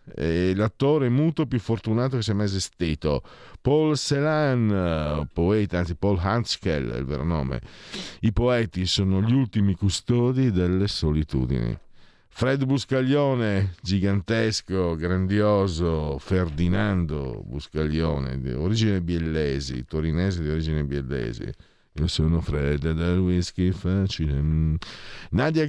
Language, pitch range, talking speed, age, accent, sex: Italian, 80-115 Hz, 105 wpm, 50-69, native, male